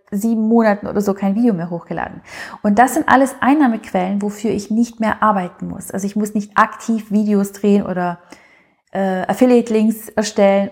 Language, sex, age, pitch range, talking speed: German, female, 30-49, 200-230 Hz, 175 wpm